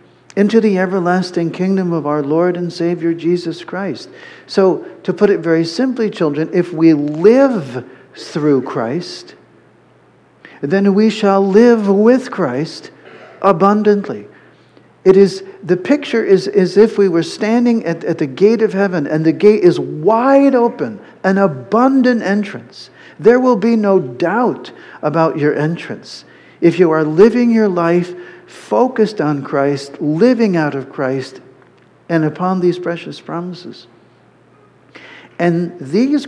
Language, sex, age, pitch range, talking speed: English, male, 50-69, 145-205 Hz, 135 wpm